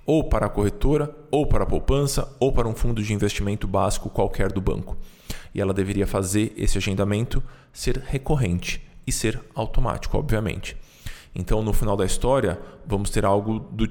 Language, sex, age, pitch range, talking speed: Portuguese, male, 20-39, 100-120 Hz, 170 wpm